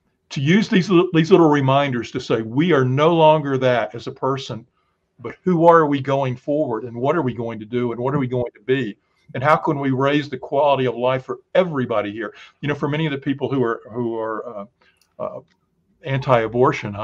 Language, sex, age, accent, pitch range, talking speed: English, male, 50-69, American, 120-145 Hz, 220 wpm